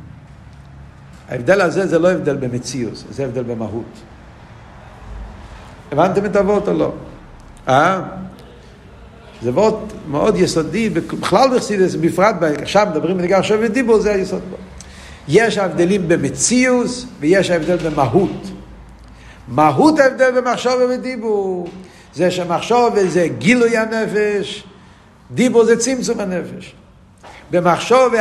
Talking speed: 105 wpm